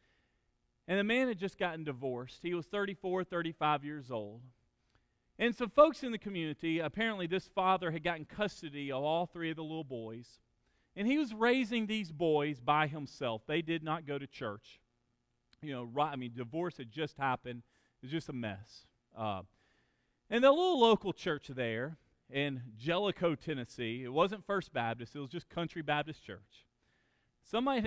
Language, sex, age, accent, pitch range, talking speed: English, male, 40-59, American, 125-185 Hz, 170 wpm